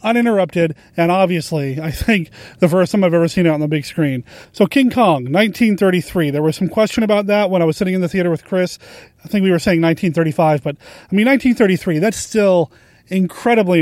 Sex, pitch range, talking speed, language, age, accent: male, 160-215 Hz, 210 wpm, English, 30-49, American